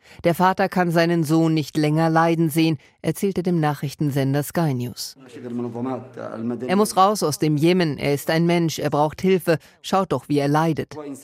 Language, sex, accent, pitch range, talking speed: German, female, German, 145-180 Hz, 170 wpm